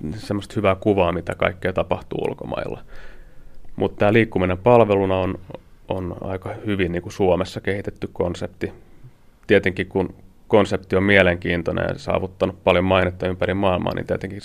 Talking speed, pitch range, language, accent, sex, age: 135 wpm, 95-105 Hz, Finnish, native, male, 30-49